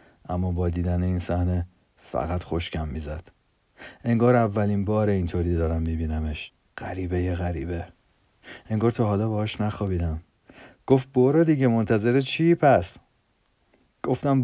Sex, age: male, 40-59